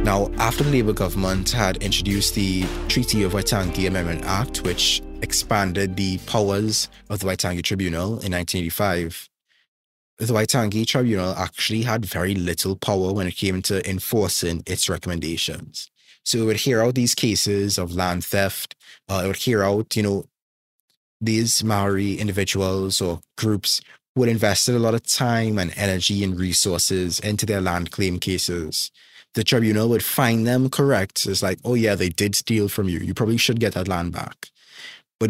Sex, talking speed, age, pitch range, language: male, 170 wpm, 20-39, 95-110 Hz, English